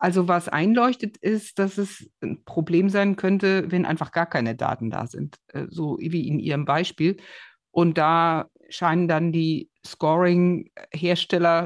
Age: 60-79